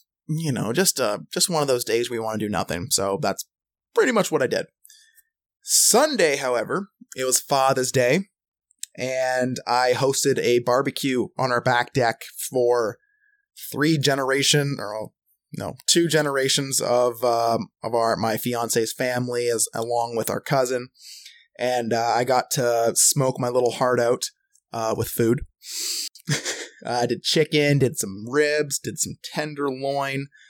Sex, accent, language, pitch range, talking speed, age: male, American, English, 120-155 Hz, 155 wpm, 20-39